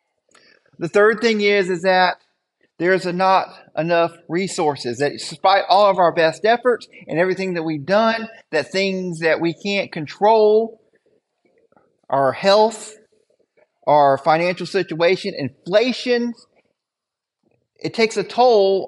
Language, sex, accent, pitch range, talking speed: English, male, American, 170-220 Hz, 120 wpm